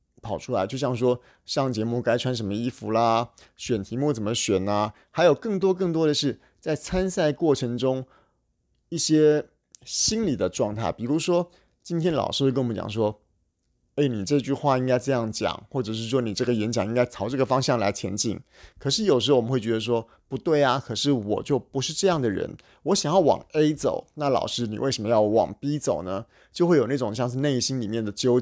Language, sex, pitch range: Chinese, male, 110-140 Hz